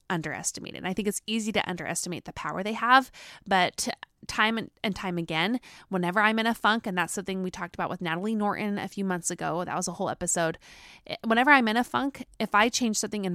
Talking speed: 220 wpm